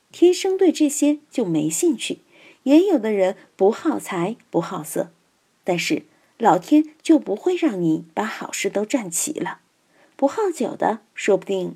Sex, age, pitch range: female, 50-69, 195-310 Hz